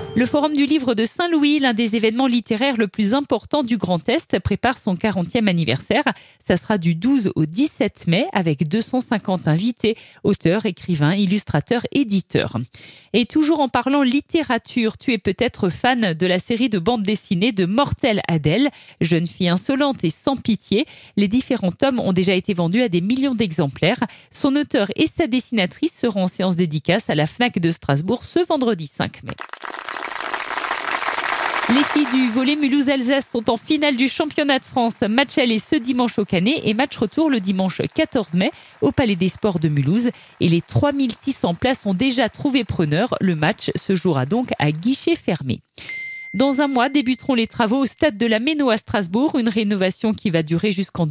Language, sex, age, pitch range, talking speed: French, female, 40-59, 185-270 Hz, 180 wpm